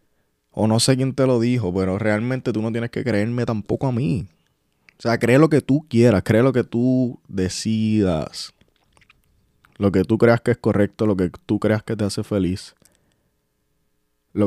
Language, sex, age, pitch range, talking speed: Spanish, male, 20-39, 95-120 Hz, 185 wpm